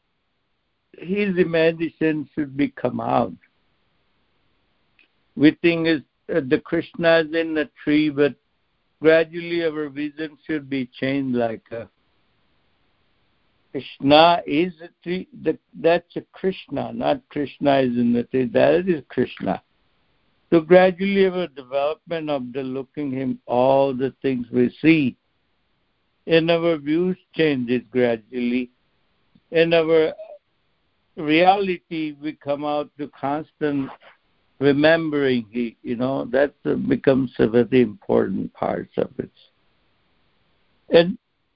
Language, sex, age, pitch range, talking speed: English, male, 60-79, 130-165 Hz, 115 wpm